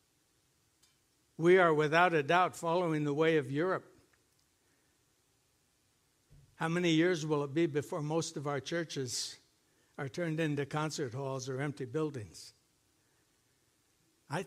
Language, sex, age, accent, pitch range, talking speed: English, male, 60-79, American, 145-175 Hz, 125 wpm